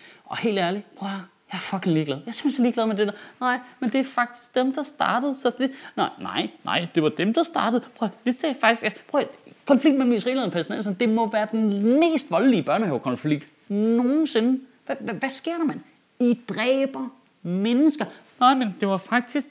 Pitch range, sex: 160-240 Hz, male